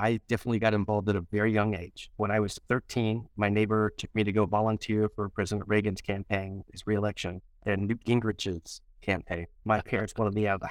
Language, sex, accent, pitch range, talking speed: English, male, American, 105-130 Hz, 215 wpm